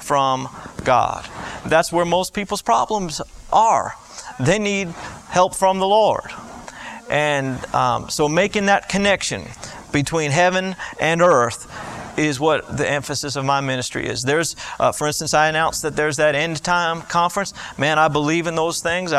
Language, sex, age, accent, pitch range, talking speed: English, male, 40-59, American, 150-190 Hz, 155 wpm